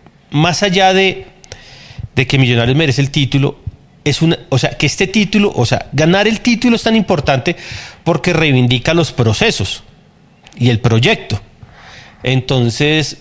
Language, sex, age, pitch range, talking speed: Spanish, male, 30-49, 130-165 Hz, 145 wpm